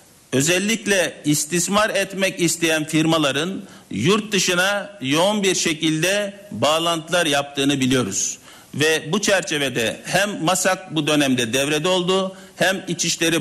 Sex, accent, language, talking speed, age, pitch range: male, native, Turkish, 105 wpm, 60-79, 155-200 Hz